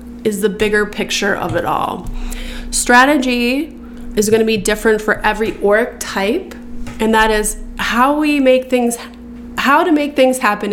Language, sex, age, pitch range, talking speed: English, female, 20-39, 205-250 Hz, 160 wpm